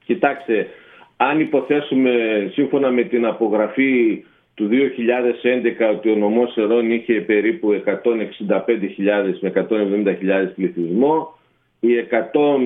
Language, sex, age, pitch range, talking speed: Greek, male, 40-59, 115-140 Hz, 100 wpm